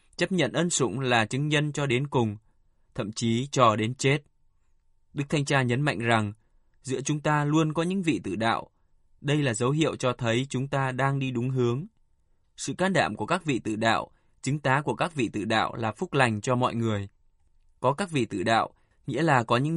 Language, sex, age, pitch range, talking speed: Vietnamese, male, 20-39, 115-145 Hz, 220 wpm